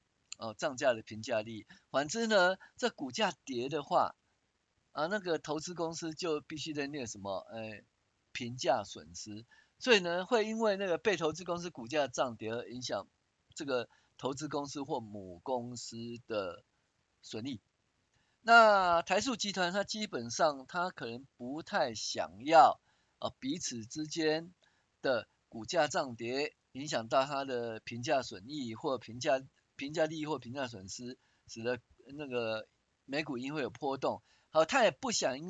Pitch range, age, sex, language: 115-165 Hz, 50-69, male, Chinese